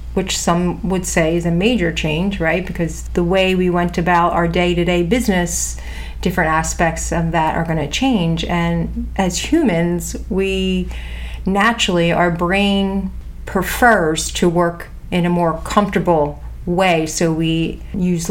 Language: English